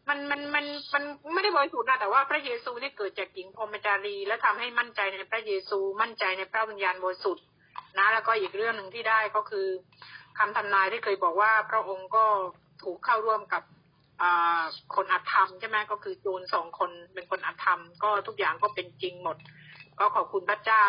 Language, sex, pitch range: Thai, female, 195-230 Hz